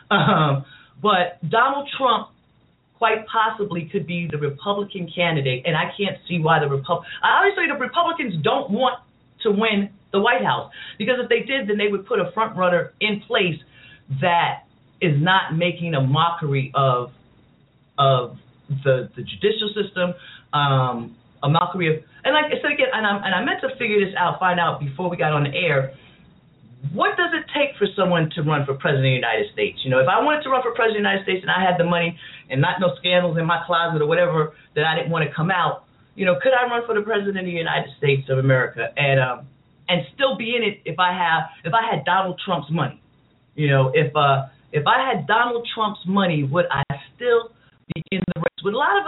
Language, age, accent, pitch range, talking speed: English, 40-59, American, 145-210 Hz, 220 wpm